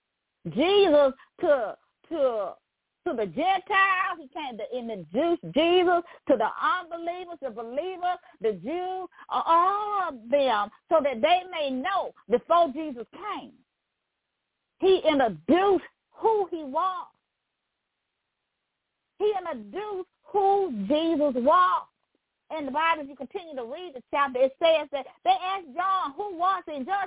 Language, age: English, 40-59